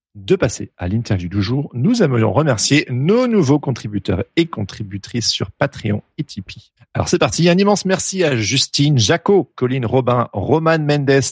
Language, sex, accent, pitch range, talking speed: French, male, French, 110-150 Hz, 165 wpm